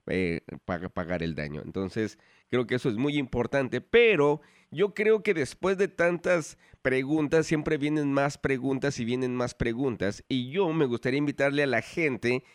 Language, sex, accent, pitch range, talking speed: English, male, Mexican, 115-145 Hz, 170 wpm